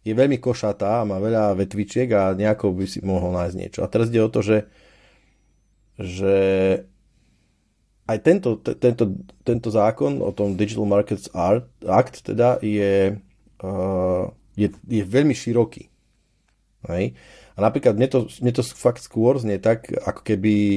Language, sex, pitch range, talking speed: Slovak, male, 100-120 Hz, 150 wpm